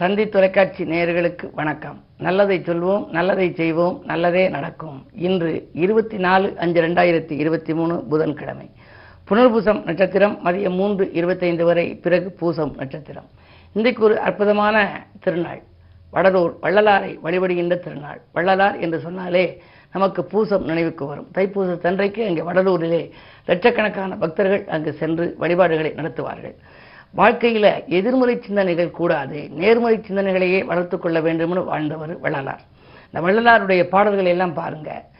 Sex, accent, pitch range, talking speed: female, native, 165-200 Hz, 115 wpm